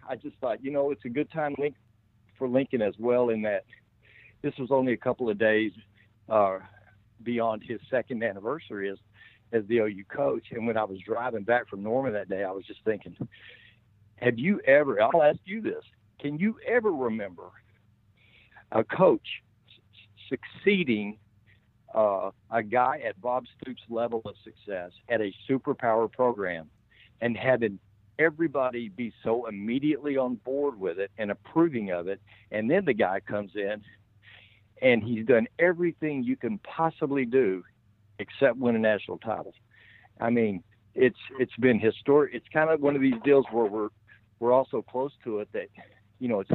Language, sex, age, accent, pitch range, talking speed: English, male, 60-79, American, 105-130 Hz, 170 wpm